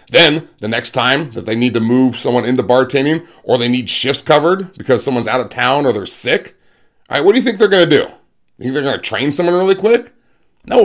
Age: 30-49